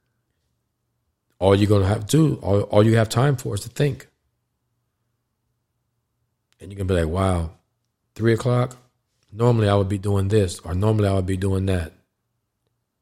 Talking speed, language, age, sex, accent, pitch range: 175 wpm, English, 40-59, male, American, 95-120 Hz